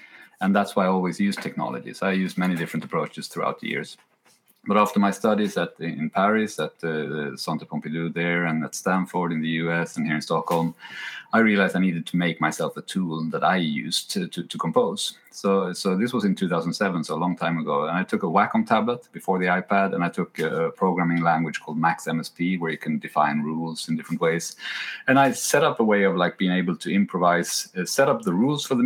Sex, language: male, English